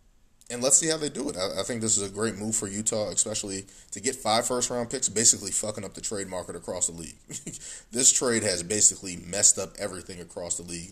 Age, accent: 20-39, American